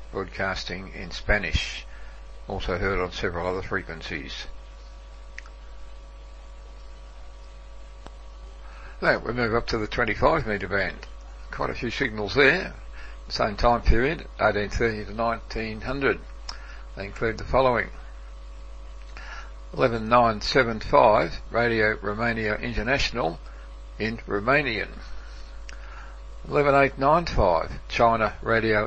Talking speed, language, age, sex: 105 wpm, English, 60-79, male